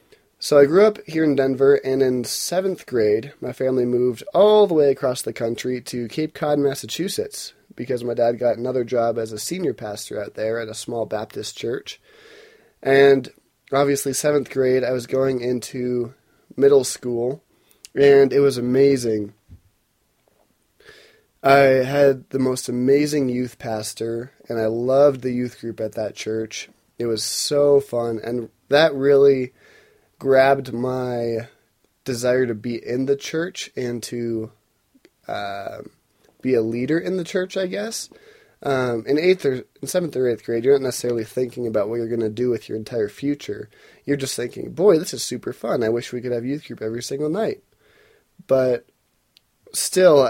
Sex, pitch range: male, 120-140 Hz